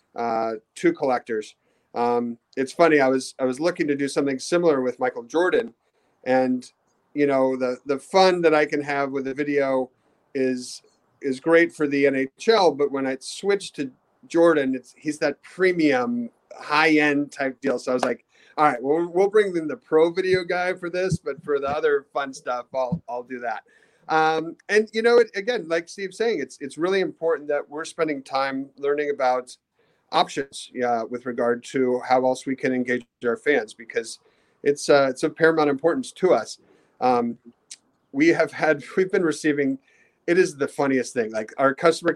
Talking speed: 190 wpm